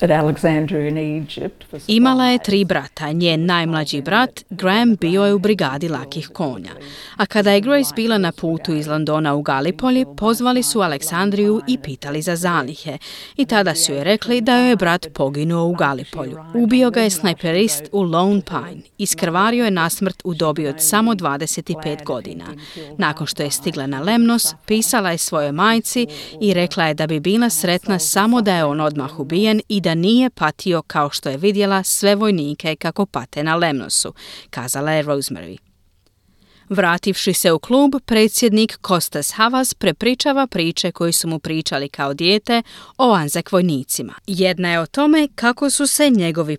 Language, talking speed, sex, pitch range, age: Croatian, 160 wpm, female, 155-215 Hz, 30-49